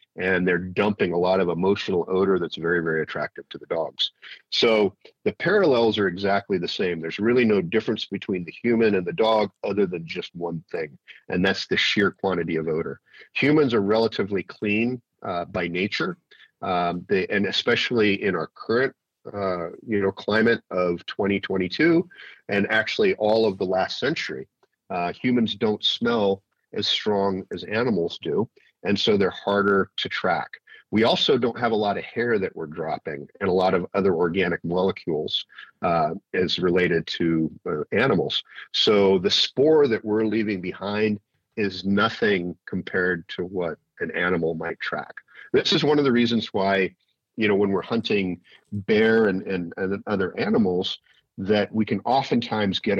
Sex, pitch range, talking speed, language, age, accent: male, 90-110 Hz, 170 wpm, English, 40-59, American